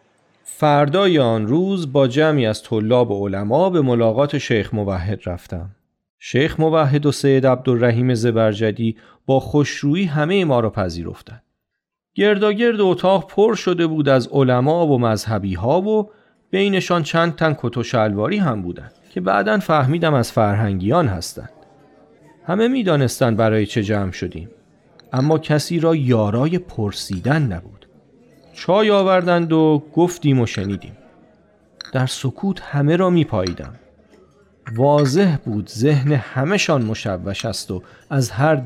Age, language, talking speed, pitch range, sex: 40-59, Persian, 130 wpm, 110-165 Hz, male